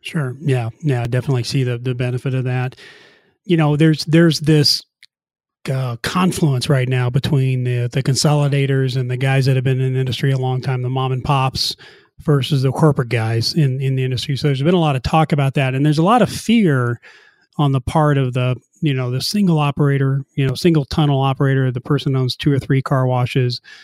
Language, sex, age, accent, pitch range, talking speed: English, male, 30-49, American, 130-150 Hz, 220 wpm